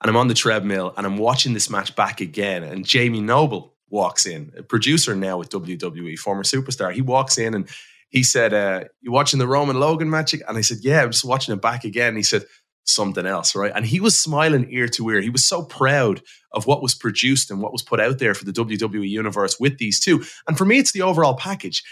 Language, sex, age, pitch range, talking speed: English, male, 20-39, 110-160 Hz, 240 wpm